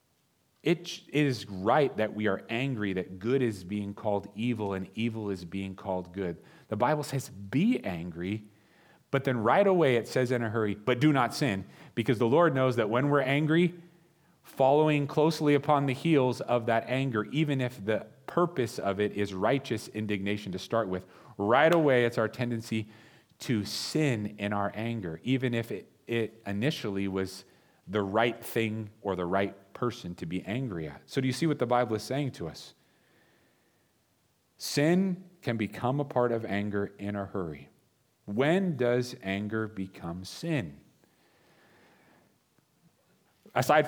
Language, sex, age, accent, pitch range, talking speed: English, male, 30-49, American, 105-140 Hz, 165 wpm